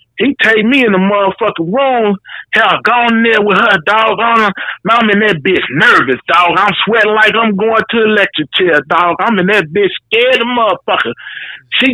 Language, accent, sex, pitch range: English, American, male, 225-315 Hz